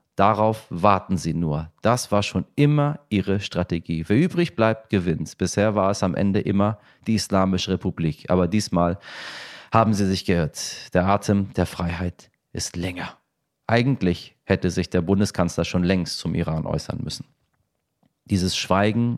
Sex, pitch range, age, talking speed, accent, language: male, 85-105 Hz, 30-49, 150 wpm, German, German